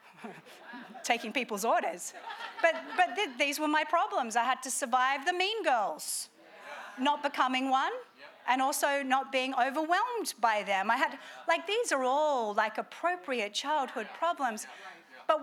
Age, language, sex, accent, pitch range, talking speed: 40-59, English, female, Australian, 230-315 Hz, 150 wpm